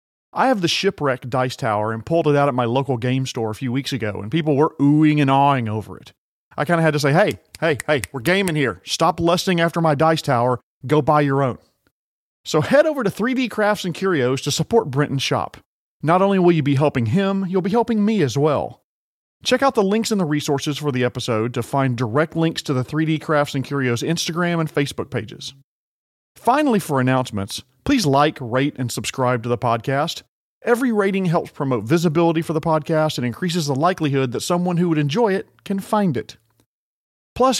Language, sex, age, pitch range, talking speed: English, male, 40-59, 130-175 Hz, 210 wpm